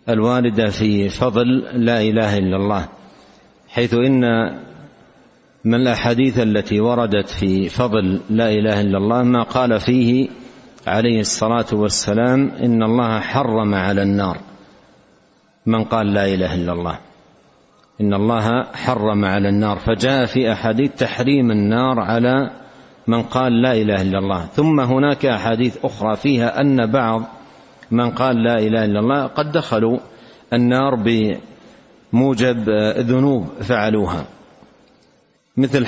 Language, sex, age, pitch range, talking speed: Arabic, male, 60-79, 105-125 Hz, 120 wpm